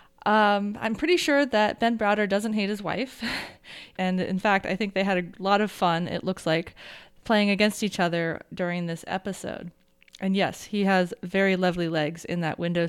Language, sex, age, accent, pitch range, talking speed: English, female, 20-39, American, 170-205 Hz, 195 wpm